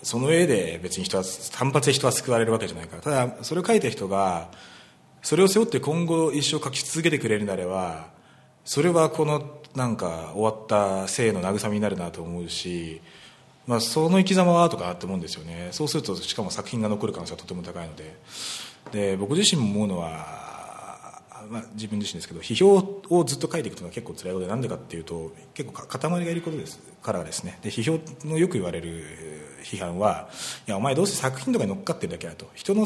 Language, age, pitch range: Japanese, 30-49, 95-155 Hz